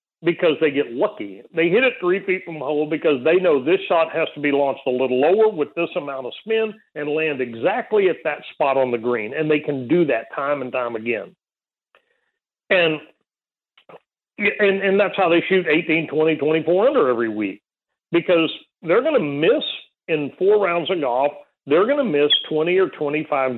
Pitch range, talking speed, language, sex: 145-195 Hz, 190 wpm, English, male